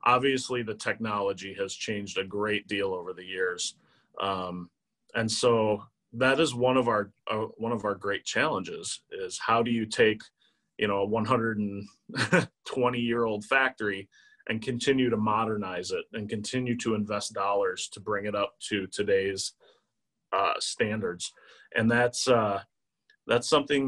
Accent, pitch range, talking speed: American, 100-125 Hz, 150 wpm